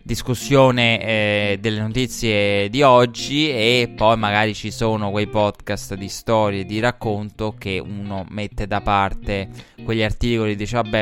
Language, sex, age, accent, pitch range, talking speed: Italian, male, 20-39, native, 105-120 Hz, 145 wpm